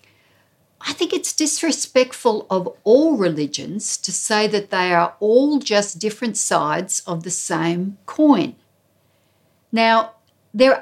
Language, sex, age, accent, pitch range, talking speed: English, female, 60-79, Australian, 170-250 Hz, 120 wpm